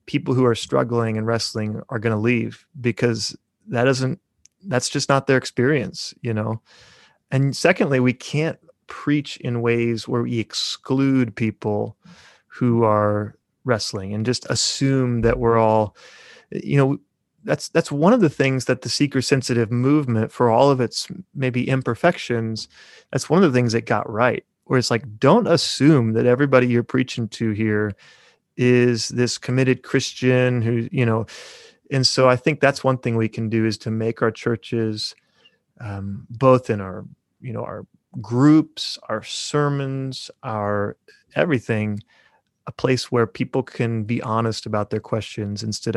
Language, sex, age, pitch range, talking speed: English, male, 30-49, 110-130 Hz, 160 wpm